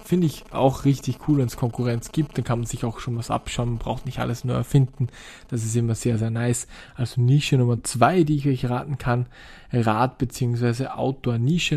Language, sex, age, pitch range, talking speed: German, male, 20-39, 125-145 Hz, 210 wpm